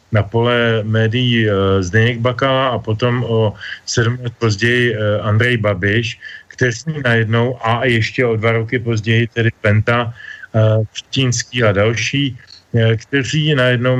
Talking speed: 135 wpm